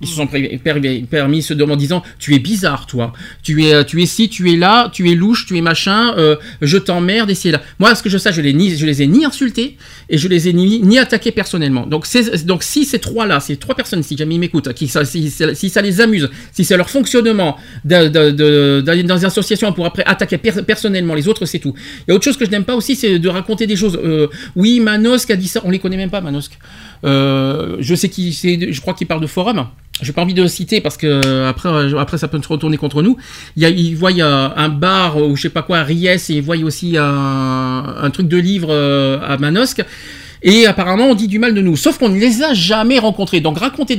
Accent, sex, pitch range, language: French, male, 150-210 Hz, French